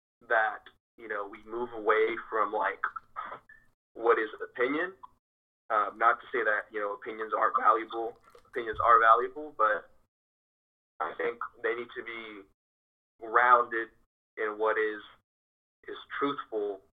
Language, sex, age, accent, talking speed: English, male, 20-39, American, 130 wpm